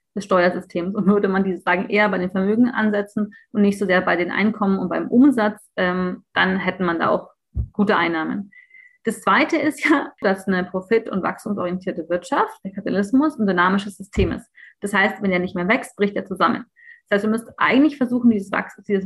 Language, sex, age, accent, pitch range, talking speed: German, female, 30-49, German, 190-245 Hz, 205 wpm